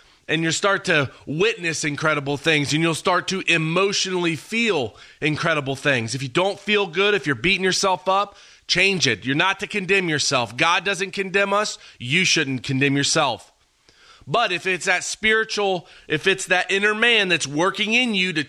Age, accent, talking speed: 30-49, American, 180 wpm